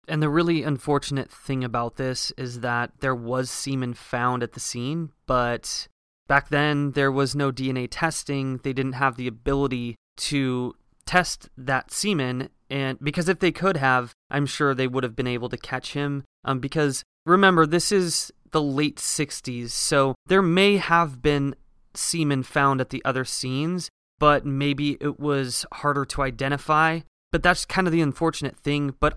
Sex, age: male, 20-39